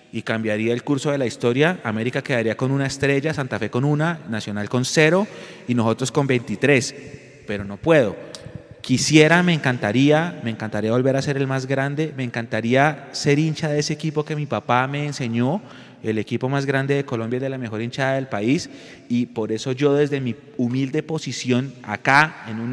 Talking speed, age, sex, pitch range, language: 190 wpm, 30-49, male, 120-145 Hz, Spanish